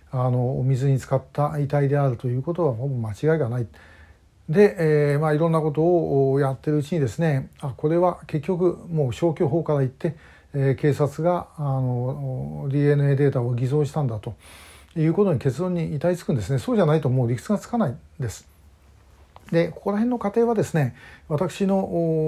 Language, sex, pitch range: Japanese, male, 130-165 Hz